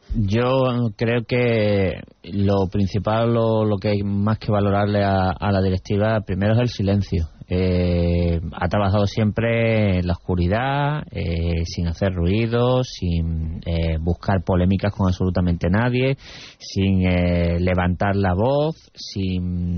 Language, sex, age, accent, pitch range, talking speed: Spanish, male, 30-49, Spanish, 90-110 Hz, 135 wpm